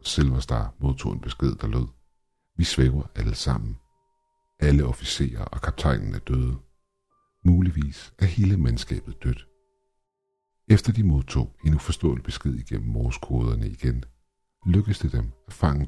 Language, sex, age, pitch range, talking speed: Danish, male, 60-79, 65-100 Hz, 130 wpm